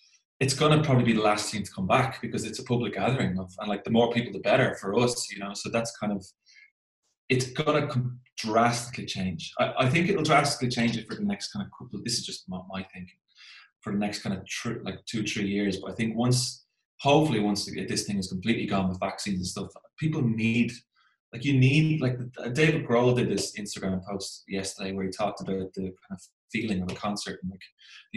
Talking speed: 230 wpm